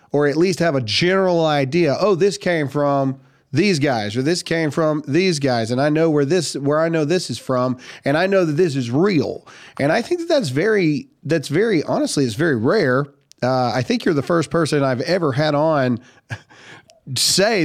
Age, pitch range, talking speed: 40-59, 125-170 Hz, 205 wpm